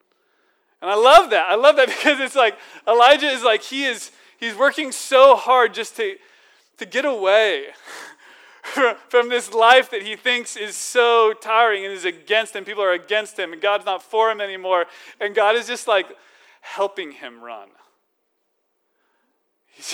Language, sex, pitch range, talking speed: English, male, 190-315 Hz, 170 wpm